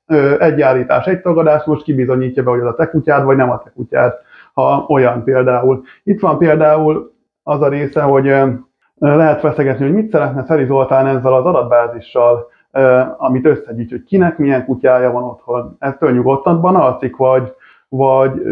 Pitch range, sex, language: 130-155 Hz, male, Hungarian